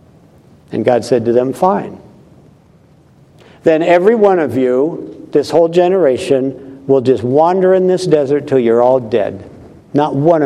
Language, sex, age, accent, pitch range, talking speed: English, male, 60-79, American, 130-175 Hz, 150 wpm